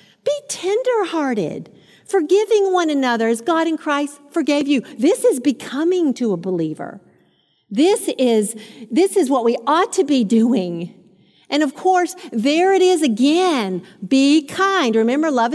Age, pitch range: 50-69, 235-350 Hz